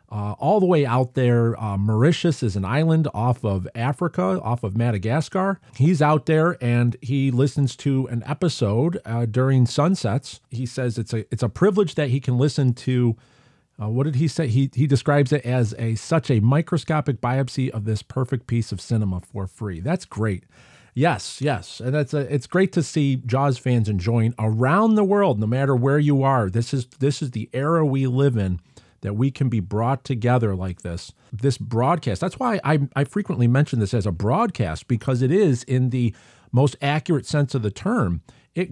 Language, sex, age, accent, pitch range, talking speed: English, male, 40-59, American, 115-145 Hz, 195 wpm